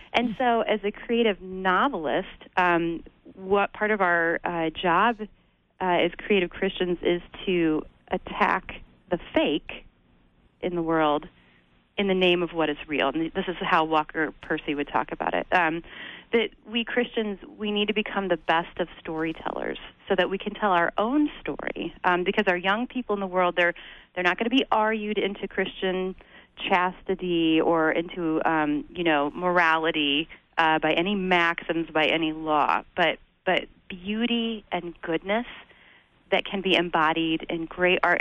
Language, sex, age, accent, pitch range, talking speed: English, female, 30-49, American, 160-195 Hz, 165 wpm